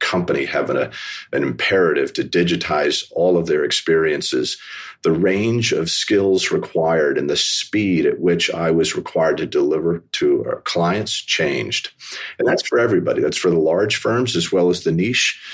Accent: American